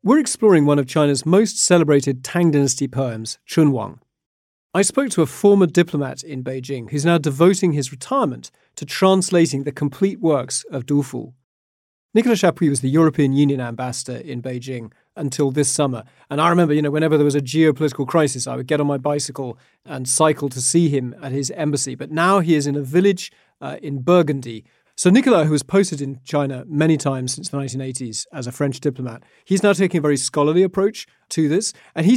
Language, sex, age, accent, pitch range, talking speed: English, male, 40-59, British, 135-165 Hz, 200 wpm